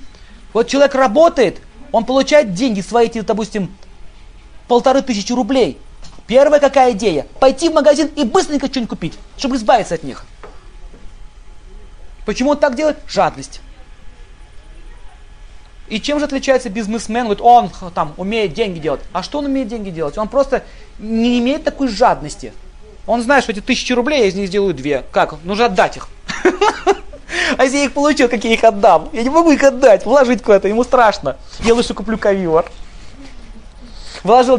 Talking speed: 160 wpm